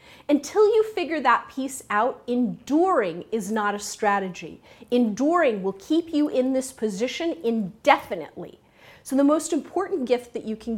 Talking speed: 150 wpm